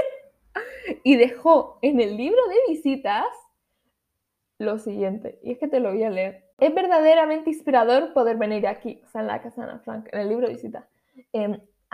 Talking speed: 185 wpm